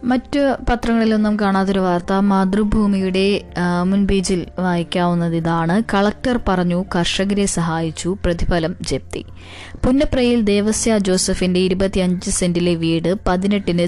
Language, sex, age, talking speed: Malayalam, female, 20-39, 90 wpm